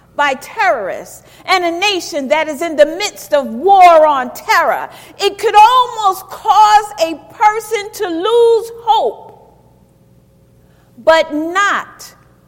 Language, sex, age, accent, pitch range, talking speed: English, female, 50-69, American, 290-410 Hz, 120 wpm